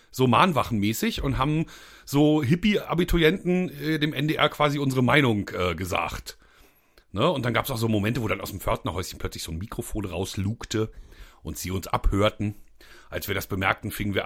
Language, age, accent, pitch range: German, 40-59, German, 110-155 Hz